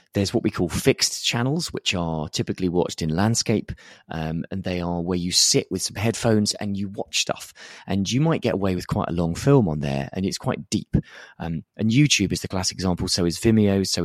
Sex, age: male, 30-49